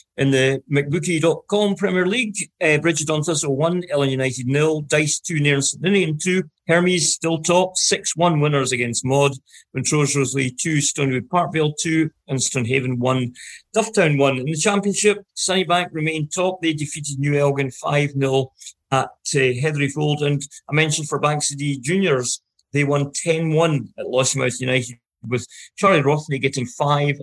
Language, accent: English, British